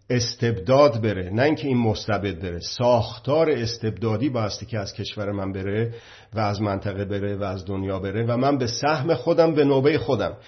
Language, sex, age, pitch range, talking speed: Persian, male, 50-69, 110-140 Hz, 180 wpm